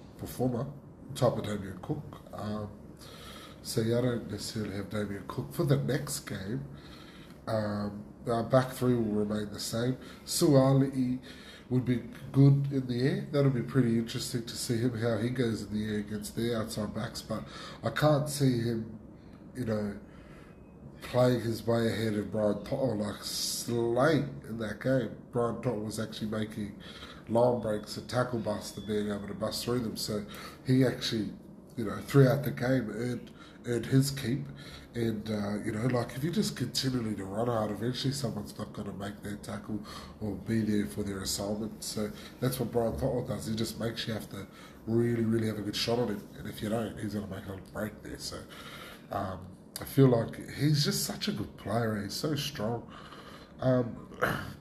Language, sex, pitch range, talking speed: English, male, 105-125 Hz, 185 wpm